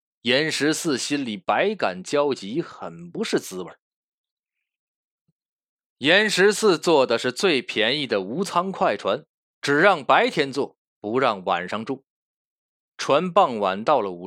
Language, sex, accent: Chinese, male, native